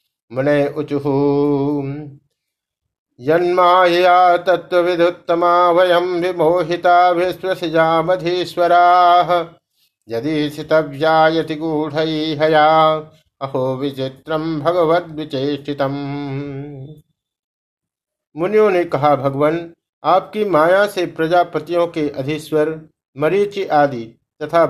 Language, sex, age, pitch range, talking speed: Hindi, male, 50-69, 145-175 Hz, 60 wpm